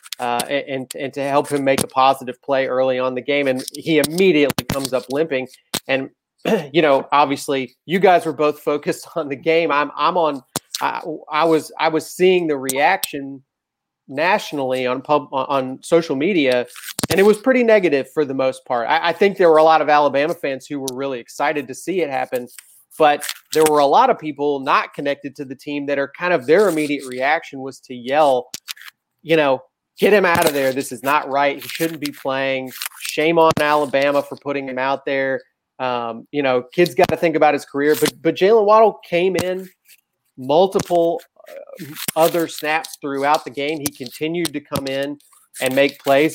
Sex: male